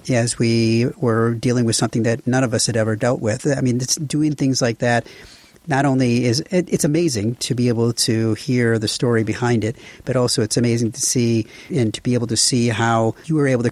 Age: 50-69